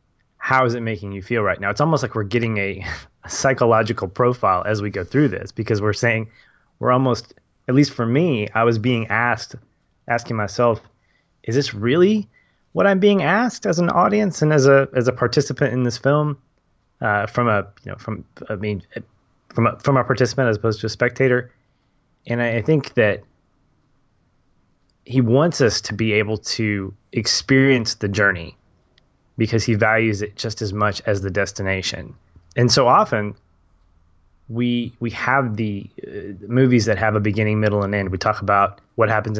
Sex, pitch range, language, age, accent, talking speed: male, 105-125 Hz, English, 20-39, American, 170 wpm